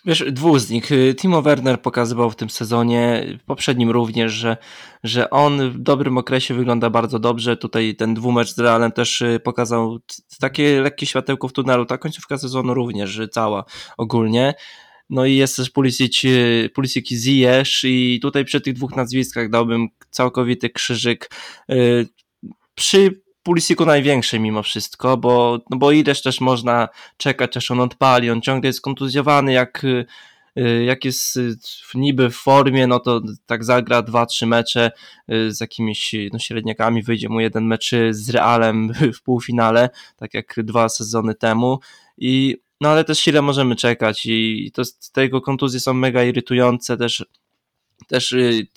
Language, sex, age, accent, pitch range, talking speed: Polish, male, 20-39, native, 115-130 Hz, 155 wpm